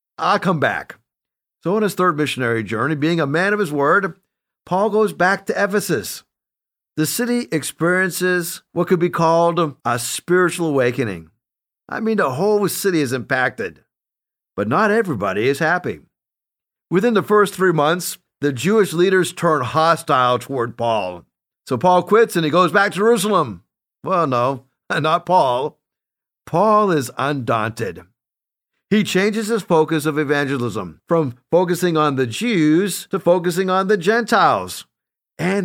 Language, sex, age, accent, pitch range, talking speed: English, male, 50-69, American, 140-195 Hz, 145 wpm